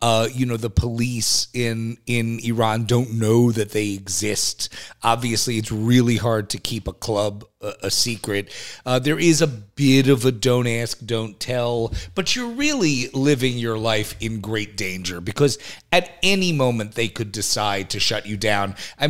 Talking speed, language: 175 wpm, English